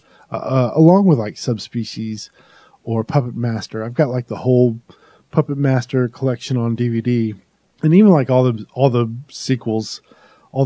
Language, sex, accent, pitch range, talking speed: English, male, American, 120-160 Hz, 150 wpm